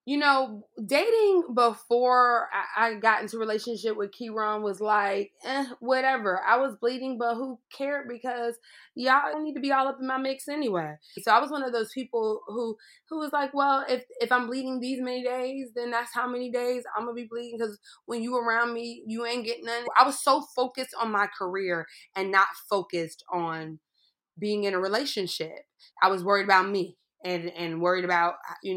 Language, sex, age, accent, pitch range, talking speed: English, female, 20-39, American, 190-245 Hz, 195 wpm